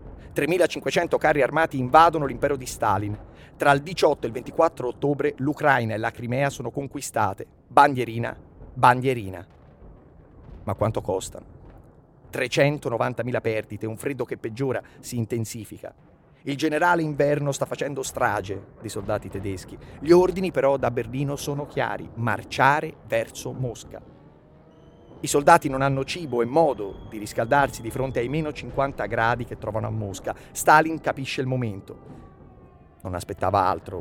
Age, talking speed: 30-49, 140 wpm